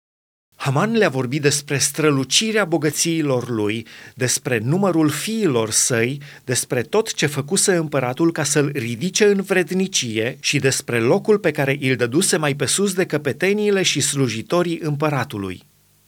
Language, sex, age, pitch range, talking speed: Romanian, male, 30-49, 125-165 Hz, 135 wpm